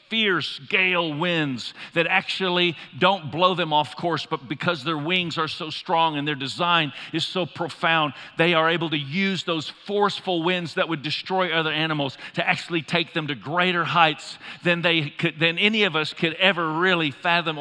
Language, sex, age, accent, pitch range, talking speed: English, male, 50-69, American, 155-185 Hz, 185 wpm